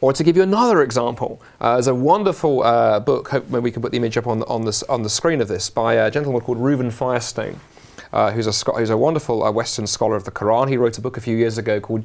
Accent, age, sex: British, 30-49, male